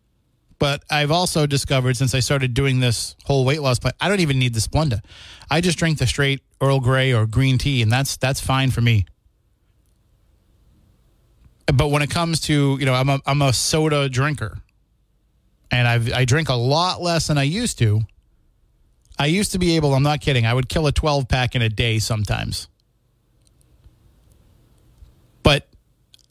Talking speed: 180 wpm